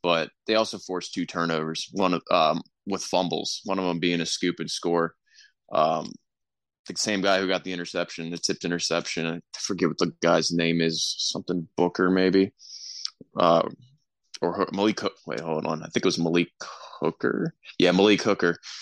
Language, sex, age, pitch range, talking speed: English, male, 20-39, 85-95 Hz, 170 wpm